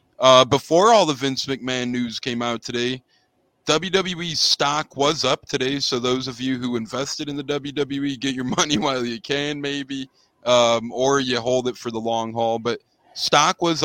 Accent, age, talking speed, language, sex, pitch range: American, 20-39, 185 wpm, English, male, 115-130 Hz